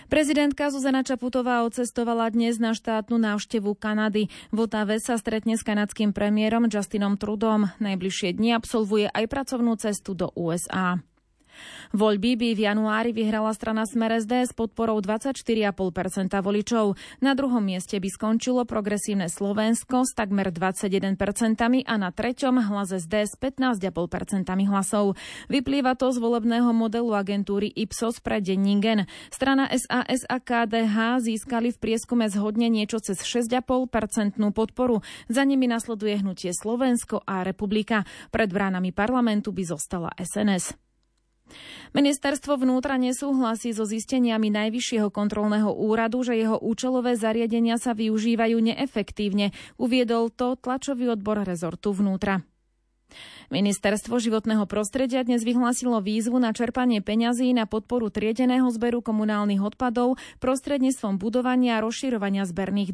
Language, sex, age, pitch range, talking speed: Slovak, female, 20-39, 205-240 Hz, 125 wpm